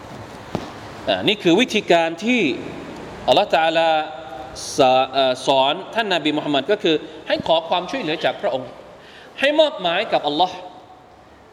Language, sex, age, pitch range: Thai, male, 20-39, 145-210 Hz